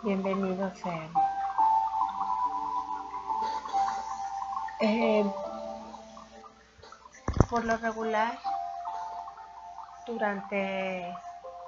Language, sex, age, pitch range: Spanish, female, 30-49, 195-240 Hz